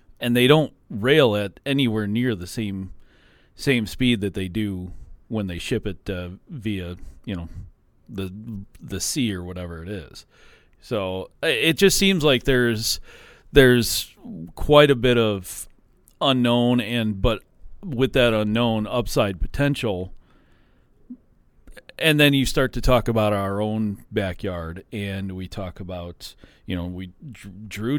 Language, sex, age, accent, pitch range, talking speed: English, male, 40-59, American, 95-125 Hz, 140 wpm